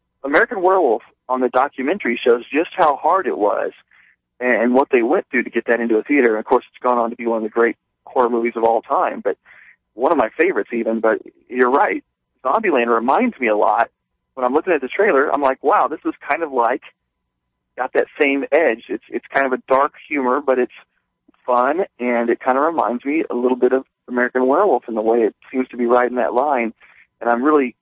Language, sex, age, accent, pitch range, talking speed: English, male, 40-59, American, 115-145 Hz, 230 wpm